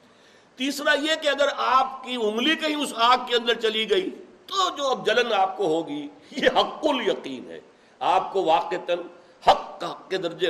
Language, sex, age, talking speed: Urdu, male, 60-79, 185 wpm